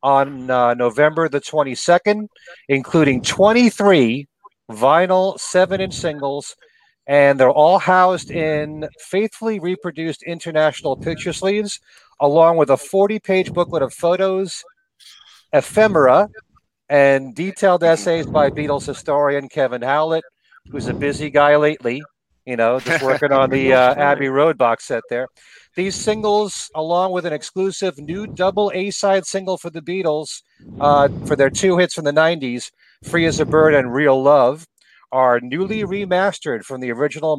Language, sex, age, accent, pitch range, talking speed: English, male, 40-59, American, 140-190 Hz, 140 wpm